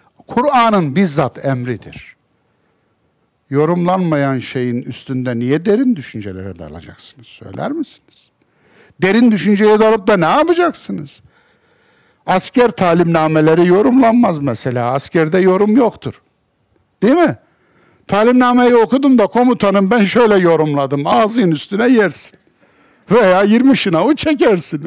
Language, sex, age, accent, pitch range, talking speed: Turkish, male, 60-79, native, 160-245 Hz, 100 wpm